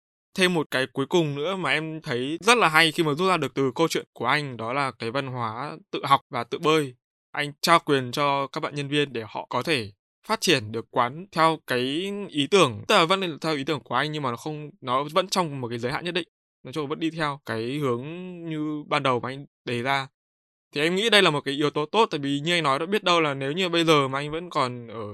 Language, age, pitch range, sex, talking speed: Vietnamese, 20-39, 125-160 Hz, male, 280 wpm